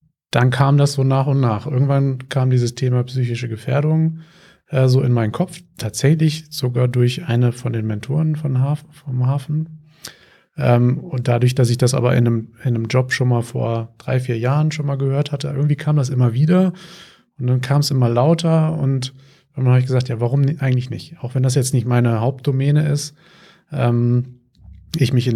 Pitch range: 120-140 Hz